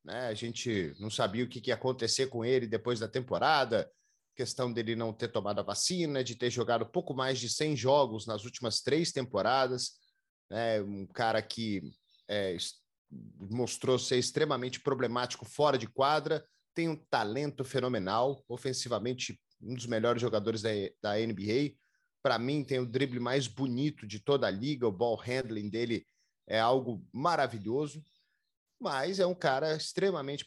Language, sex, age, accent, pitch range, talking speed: Portuguese, male, 30-49, Brazilian, 115-145 Hz, 160 wpm